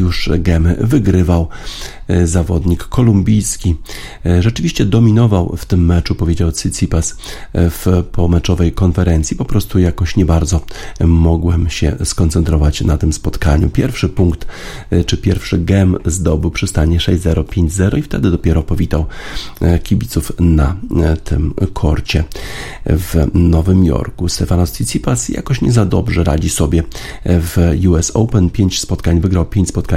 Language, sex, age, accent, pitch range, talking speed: Polish, male, 40-59, native, 85-95 Hz, 125 wpm